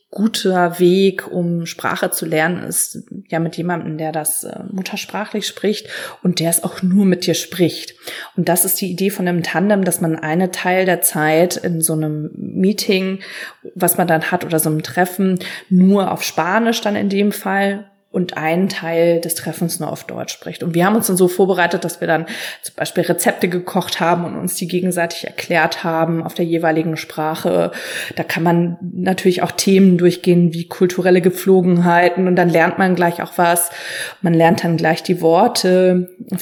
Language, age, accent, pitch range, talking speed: German, 20-39, German, 165-190 Hz, 190 wpm